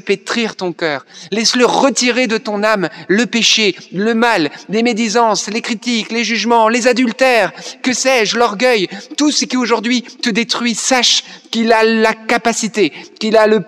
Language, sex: French, male